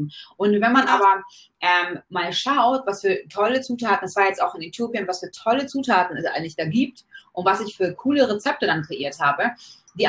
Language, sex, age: German, female, 20-39